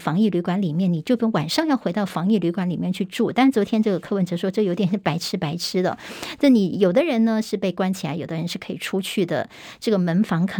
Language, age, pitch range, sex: Chinese, 50-69, 180-225 Hz, male